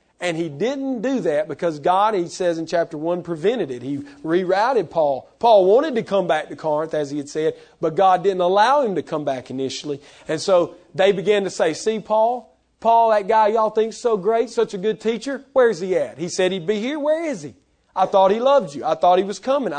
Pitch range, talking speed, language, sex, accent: 150-210 Hz, 235 wpm, English, male, American